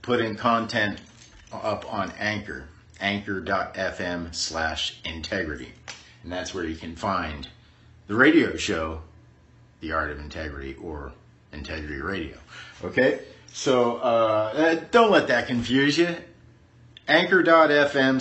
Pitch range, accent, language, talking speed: 110-135 Hz, American, English, 110 wpm